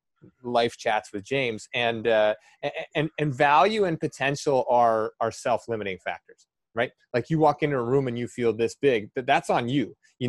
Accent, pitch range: American, 115-135 Hz